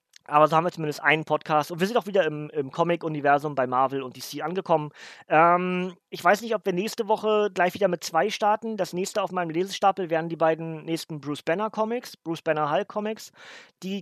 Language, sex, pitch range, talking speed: German, male, 150-180 Hz, 195 wpm